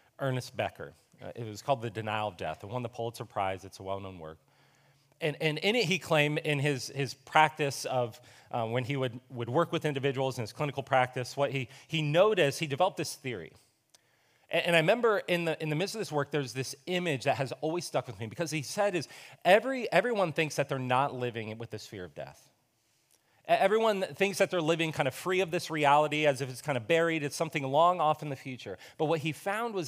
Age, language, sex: 30-49, English, male